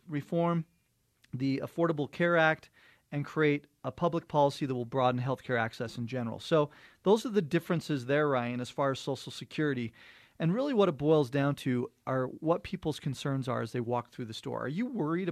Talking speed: 195 wpm